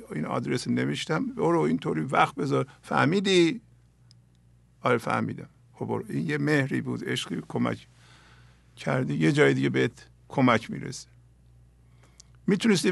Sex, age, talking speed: male, 50-69, 115 wpm